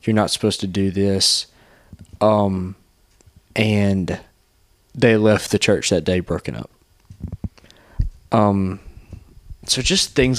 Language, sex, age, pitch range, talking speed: English, male, 20-39, 95-110 Hz, 115 wpm